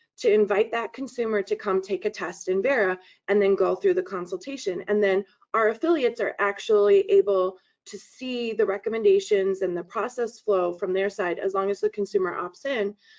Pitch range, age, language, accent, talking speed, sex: 195-275 Hz, 20-39, English, American, 190 wpm, female